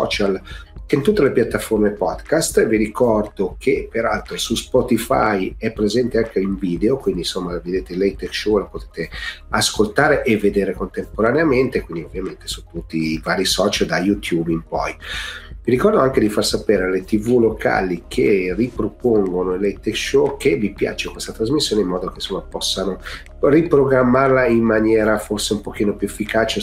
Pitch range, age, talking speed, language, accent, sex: 95-110 Hz, 40-59, 165 wpm, Italian, native, male